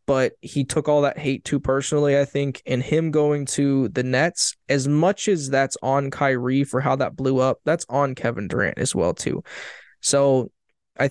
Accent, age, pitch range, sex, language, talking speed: American, 20-39, 135-165 Hz, male, English, 195 wpm